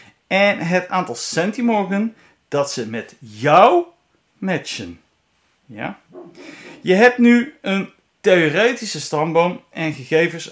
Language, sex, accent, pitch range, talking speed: Dutch, male, Dutch, 135-190 Hz, 95 wpm